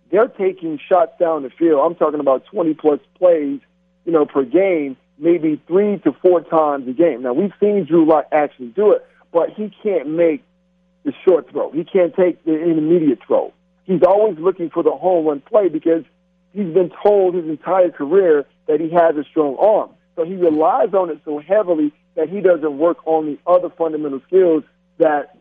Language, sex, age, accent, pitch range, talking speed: English, male, 50-69, American, 155-190 Hz, 190 wpm